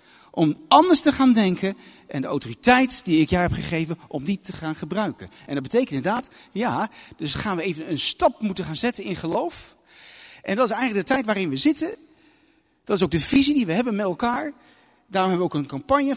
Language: Dutch